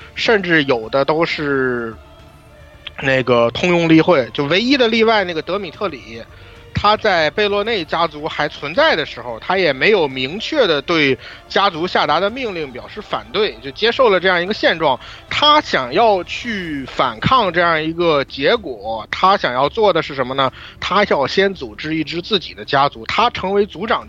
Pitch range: 145-215 Hz